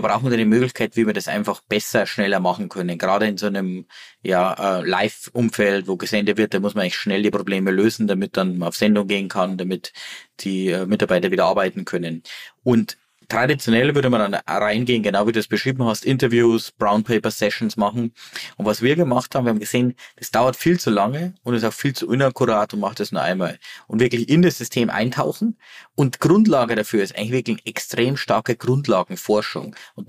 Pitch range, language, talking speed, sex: 105-130 Hz, German, 195 wpm, male